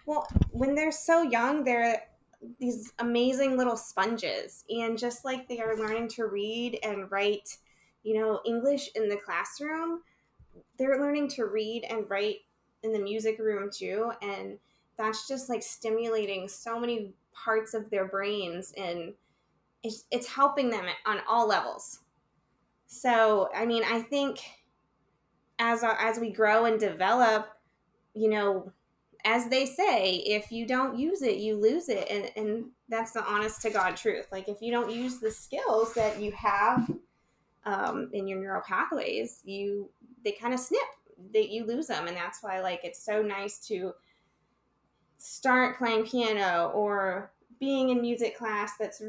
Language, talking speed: English, 160 wpm